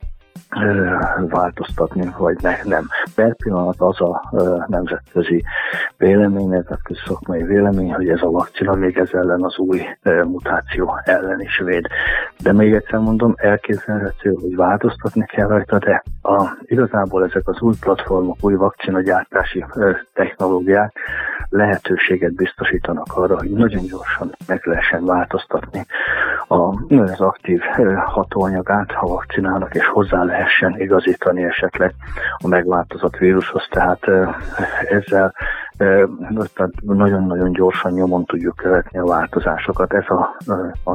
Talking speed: 120 wpm